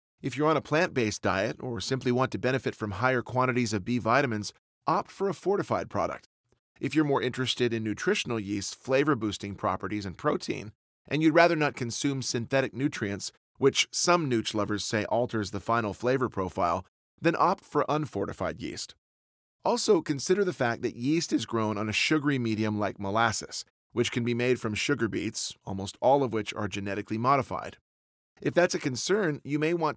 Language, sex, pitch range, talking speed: English, male, 105-135 Hz, 180 wpm